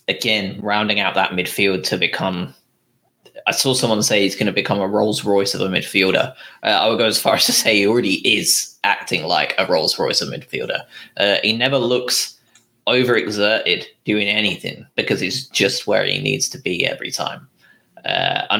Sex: male